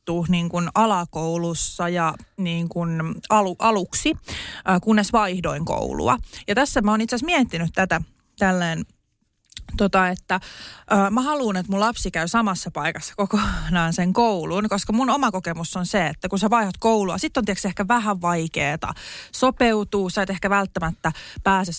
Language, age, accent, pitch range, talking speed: Finnish, 20-39, native, 180-225 Hz, 155 wpm